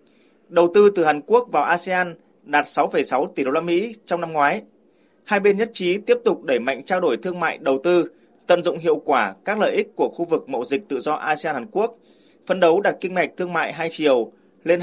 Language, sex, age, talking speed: Vietnamese, male, 20-39, 225 wpm